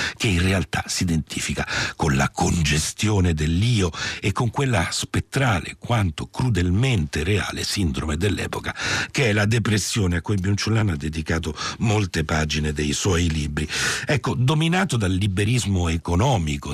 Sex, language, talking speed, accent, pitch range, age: male, Italian, 135 wpm, native, 75-105 Hz, 60-79